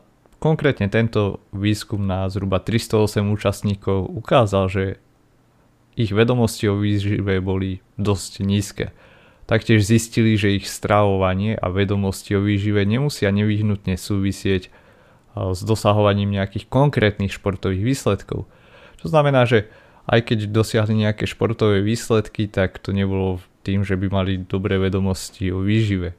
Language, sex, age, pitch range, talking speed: Slovak, male, 30-49, 95-115 Hz, 125 wpm